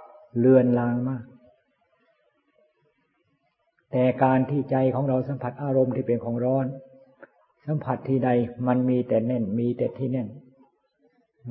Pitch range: 120-135 Hz